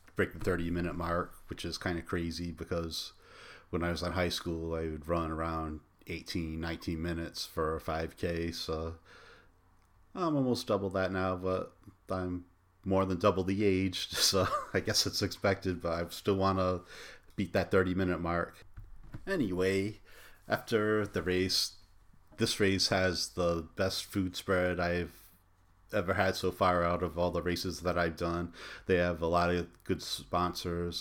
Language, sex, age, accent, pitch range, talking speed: English, male, 30-49, American, 85-95 Hz, 165 wpm